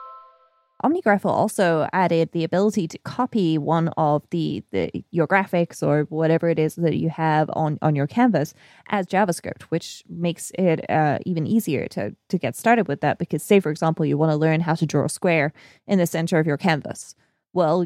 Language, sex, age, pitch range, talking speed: English, female, 20-39, 150-175 Hz, 195 wpm